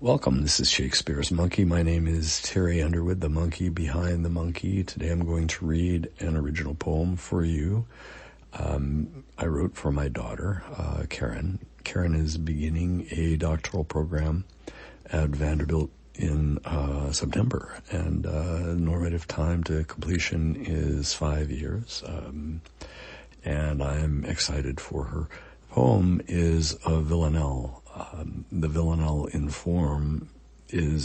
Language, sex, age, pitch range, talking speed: English, male, 60-79, 75-85 Hz, 135 wpm